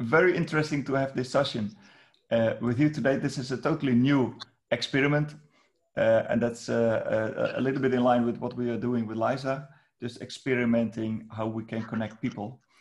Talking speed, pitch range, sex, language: 185 wpm, 110-125 Hz, male, English